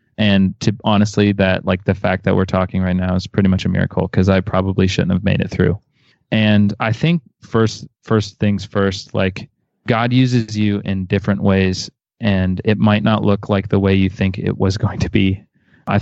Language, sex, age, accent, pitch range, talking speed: English, male, 20-39, American, 95-110 Hz, 205 wpm